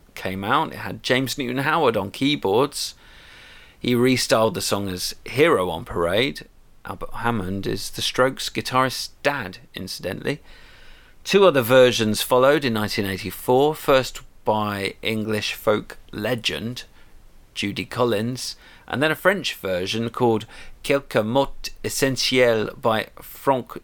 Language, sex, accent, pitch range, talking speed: English, male, British, 105-140 Hz, 125 wpm